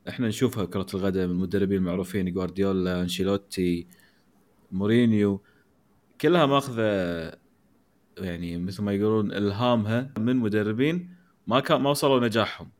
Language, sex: Arabic, male